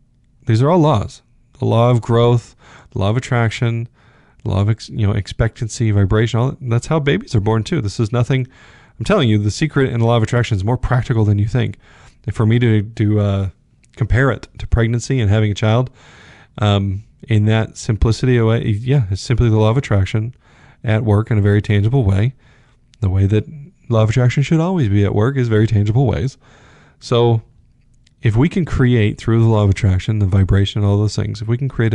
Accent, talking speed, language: American, 215 wpm, English